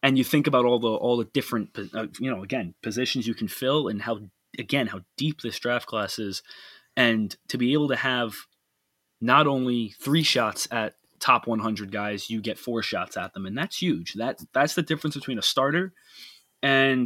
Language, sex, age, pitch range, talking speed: English, male, 20-39, 110-140 Hz, 205 wpm